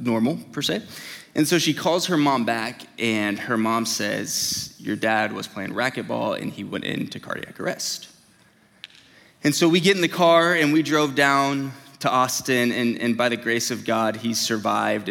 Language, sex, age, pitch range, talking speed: English, male, 20-39, 120-155 Hz, 185 wpm